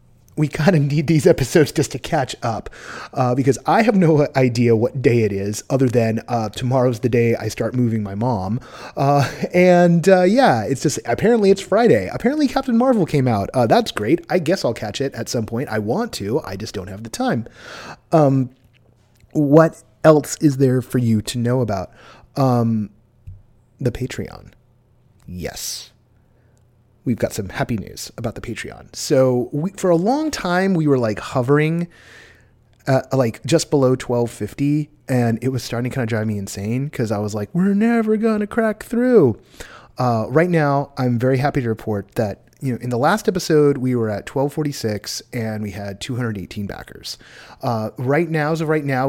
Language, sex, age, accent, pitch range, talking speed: English, male, 30-49, American, 115-150 Hz, 185 wpm